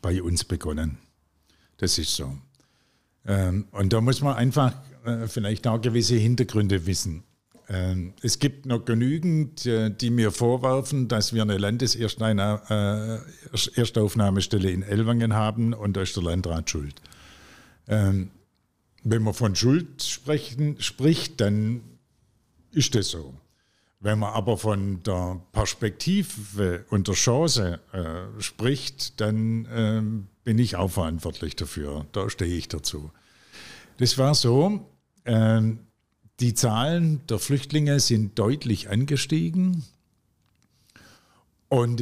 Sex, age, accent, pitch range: male, 50-69, German, 95-130 Hz